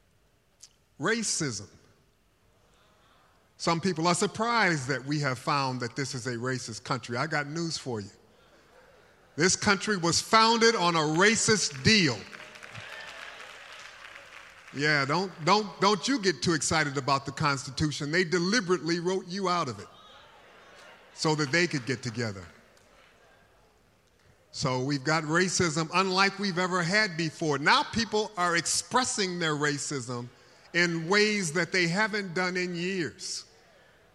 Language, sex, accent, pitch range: English, male, American, 130-195 Hz